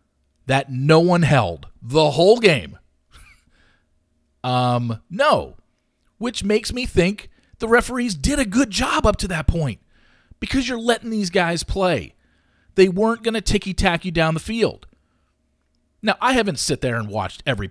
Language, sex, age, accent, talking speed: English, male, 40-59, American, 155 wpm